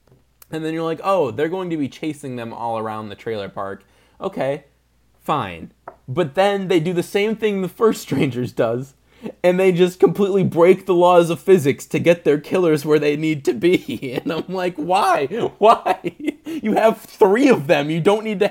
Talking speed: 200 wpm